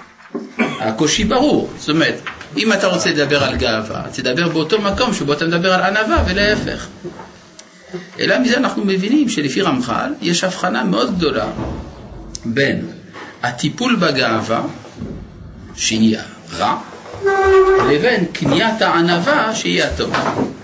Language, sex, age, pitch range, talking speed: Hebrew, male, 50-69, 145-220 Hz, 115 wpm